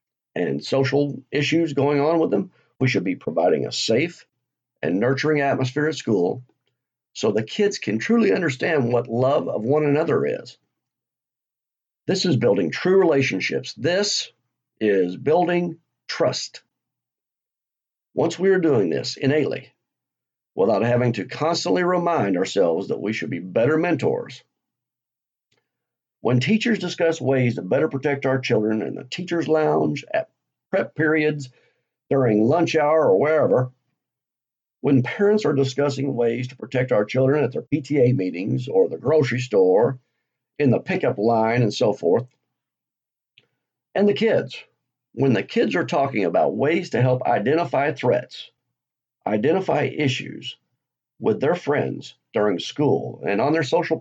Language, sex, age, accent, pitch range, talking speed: English, male, 50-69, American, 125-165 Hz, 140 wpm